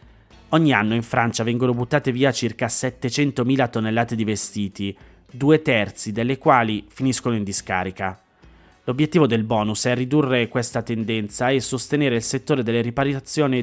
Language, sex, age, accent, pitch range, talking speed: Italian, male, 30-49, native, 110-135 Hz, 140 wpm